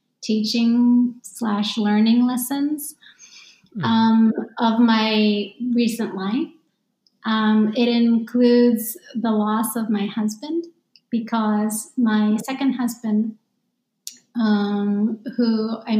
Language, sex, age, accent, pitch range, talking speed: English, female, 30-49, American, 210-240 Hz, 90 wpm